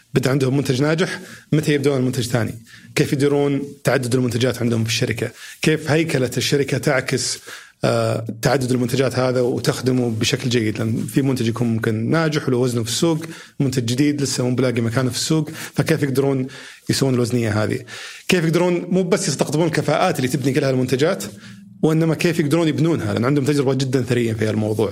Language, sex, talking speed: Arabic, male, 160 wpm